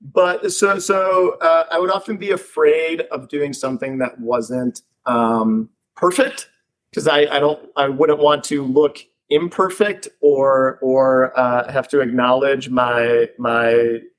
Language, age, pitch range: English, 40-59, 130-175 Hz